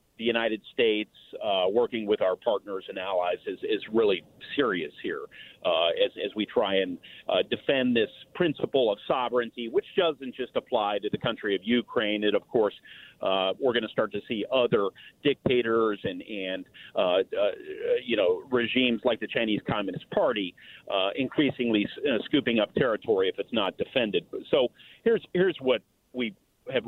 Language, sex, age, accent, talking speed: English, male, 40-59, American, 170 wpm